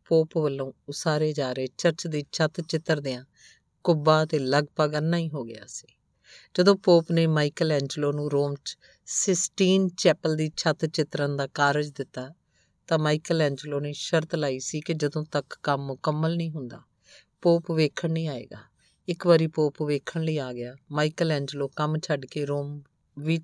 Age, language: 50-69, Punjabi